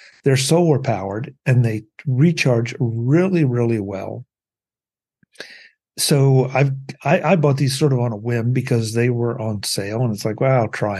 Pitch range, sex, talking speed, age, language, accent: 115-135 Hz, male, 170 wpm, 50-69, English, American